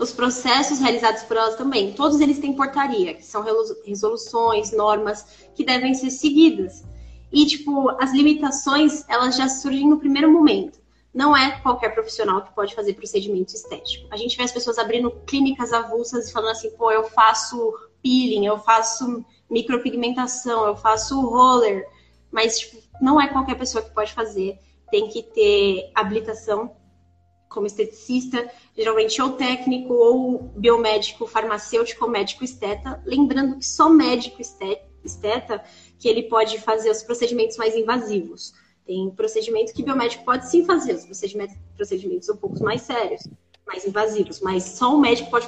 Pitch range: 220-275 Hz